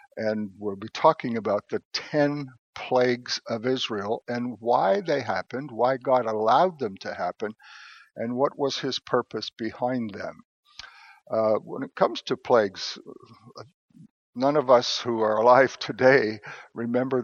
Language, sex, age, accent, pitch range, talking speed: English, male, 60-79, American, 110-130 Hz, 145 wpm